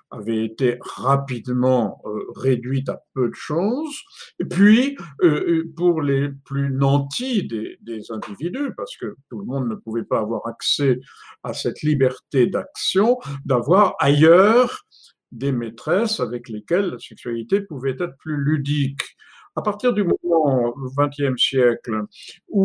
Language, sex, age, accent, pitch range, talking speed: French, male, 60-79, French, 130-195 Hz, 145 wpm